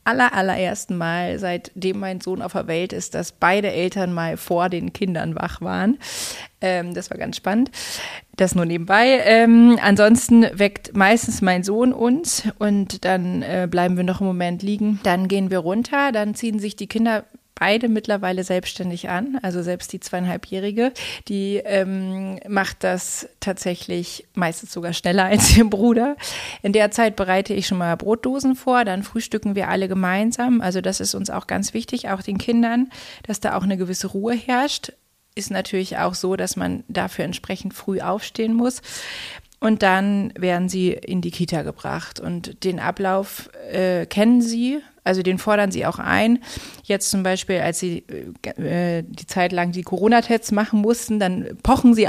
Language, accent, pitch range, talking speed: German, German, 185-225 Hz, 175 wpm